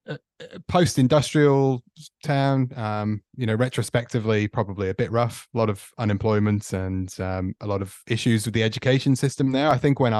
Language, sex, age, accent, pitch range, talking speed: English, male, 30-49, British, 95-120 Hz, 170 wpm